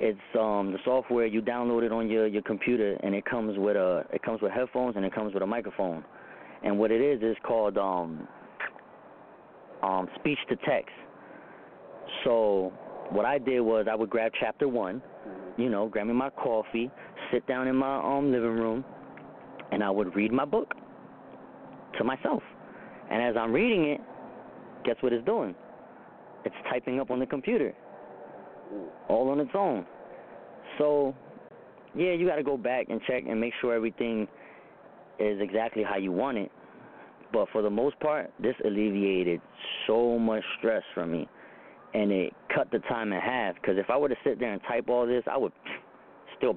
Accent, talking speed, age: American, 180 wpm, 30-49